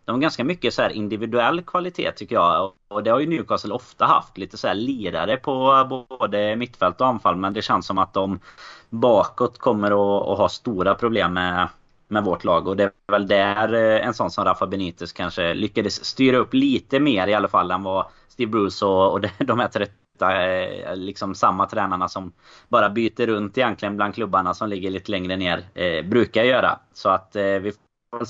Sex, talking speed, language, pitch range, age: male, 195 wpm, Swedish, 95-120 Hz, 20-39